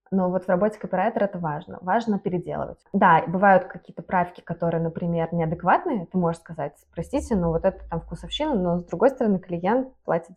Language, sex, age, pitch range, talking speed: Russian, female, 20-39, 170-210 Hz, 180 wpm